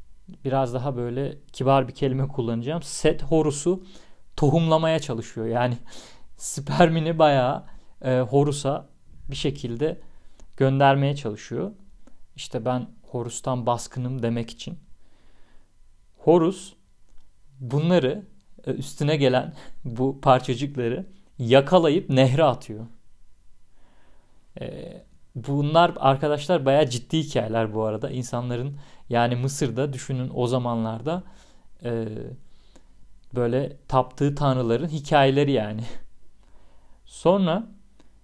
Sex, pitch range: male, 110-150 Hz